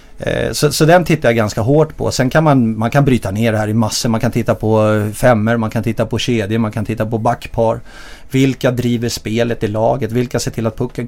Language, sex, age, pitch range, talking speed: English, male, 30-49, 110-130 Hz, 240 wpm